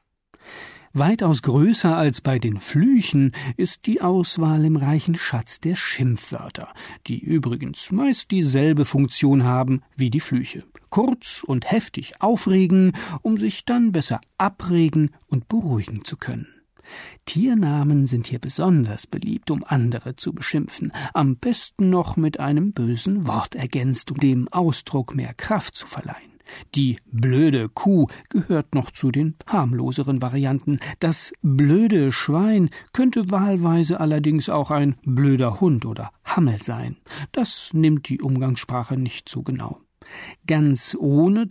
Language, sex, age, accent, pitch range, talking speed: German, male, 50-69, German, 130-180 Hz, 130 wpm